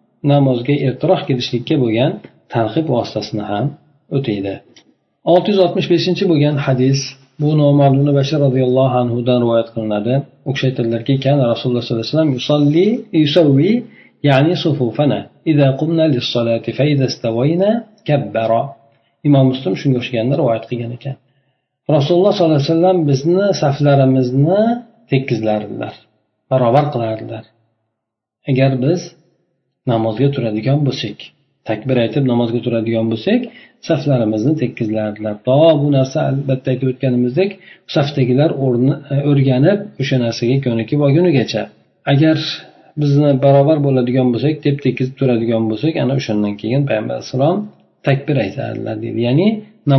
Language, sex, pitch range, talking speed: Russian, male, 120-155 Hz, 85 wpm